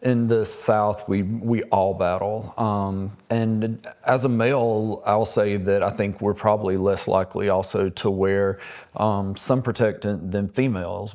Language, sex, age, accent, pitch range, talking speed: English, male, 40-59, American, 100-110 Hz, 155 wpm